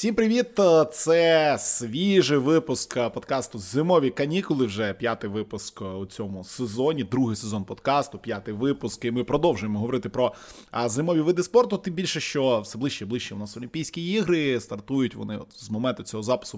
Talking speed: 165 wpm